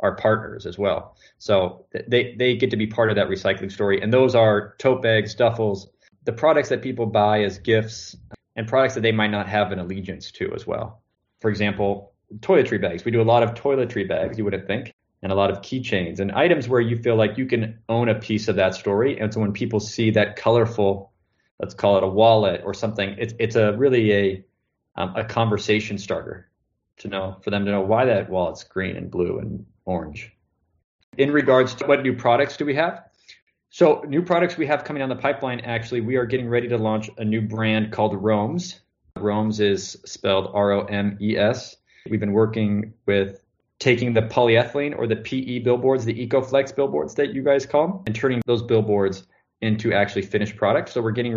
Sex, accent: male, American